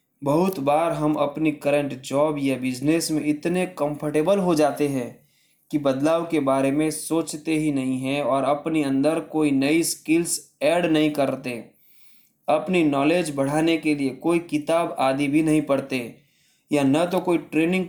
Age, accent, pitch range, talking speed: 20-39, native, 135-160 Hz, 160 wpm